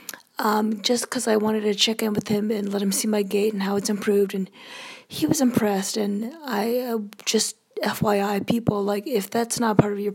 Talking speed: 220 wpm